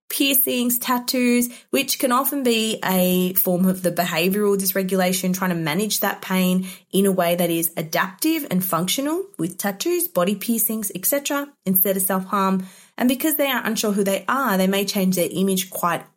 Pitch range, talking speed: 175-245 Hz, 175 wpm